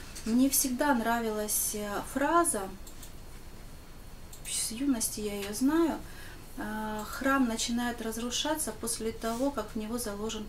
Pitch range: 205-235 Hz